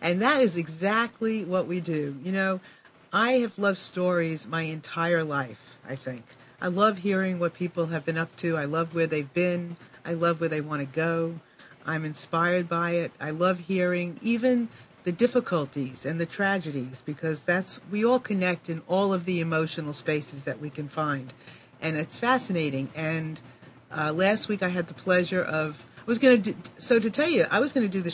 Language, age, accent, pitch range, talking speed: English, 50-69, American, 155-200 Hz, 195 wpm